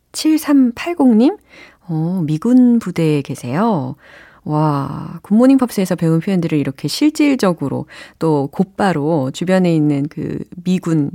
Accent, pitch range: native, 150-220 Hz